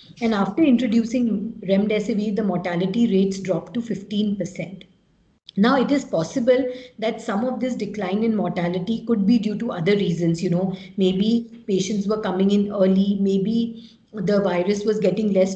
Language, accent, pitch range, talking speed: English, Indian, 195-240 Hz, 160 wpm